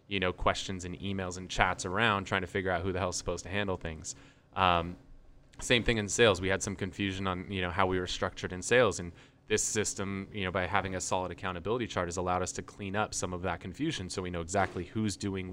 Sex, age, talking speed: male, 20-39, 250 wpm